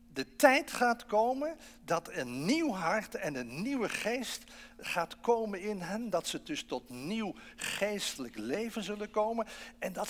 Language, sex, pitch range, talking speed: English, male, 165-235 Hz, 160 wpm